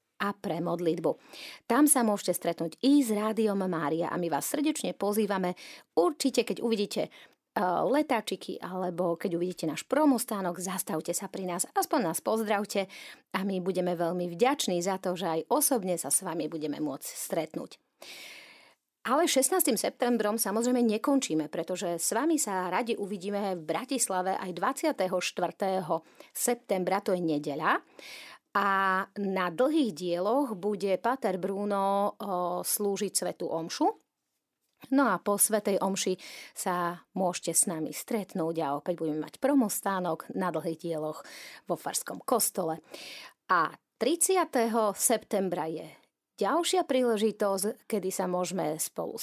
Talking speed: 135 wpm